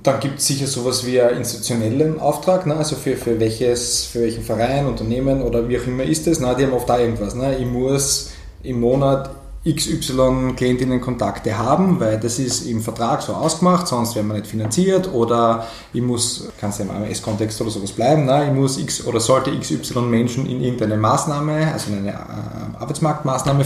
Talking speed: 190 wpm